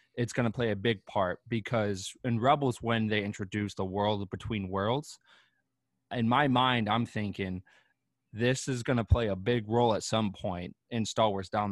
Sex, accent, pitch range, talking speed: male, American, 100-120 Hz, 190 wpm